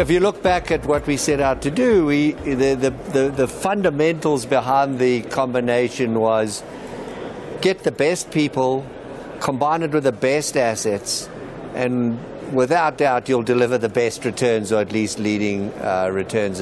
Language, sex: English, male